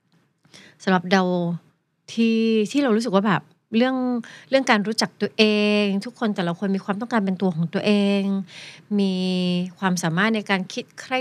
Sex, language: female, Thai